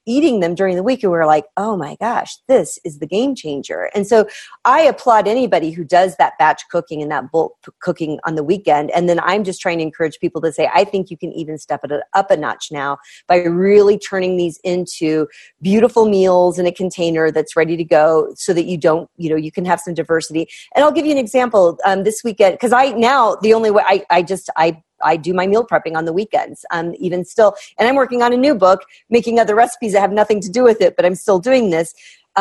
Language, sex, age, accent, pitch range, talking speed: English, female, 40-59, American, 170-225 Hz, 245 wpm